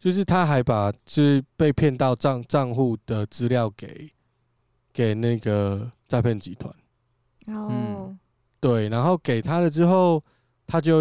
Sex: male